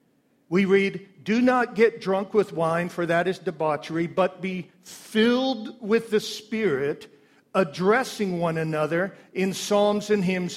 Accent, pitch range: American, 175-220 Hz